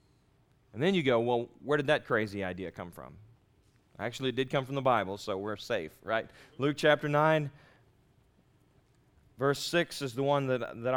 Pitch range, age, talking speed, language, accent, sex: 115-140 Hz, 30-49, 180 wpm, English, American, male